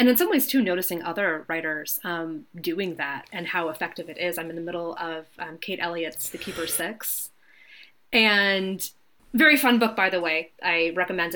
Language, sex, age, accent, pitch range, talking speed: English, female, 30-49, American, 165-225 Hz, 190 wpm